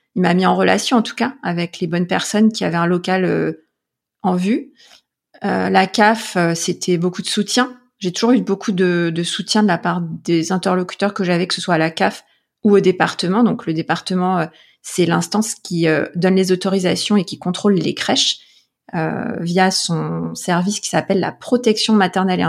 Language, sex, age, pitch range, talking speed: French, female, 30-49, 180-220 Hz, 205 wpm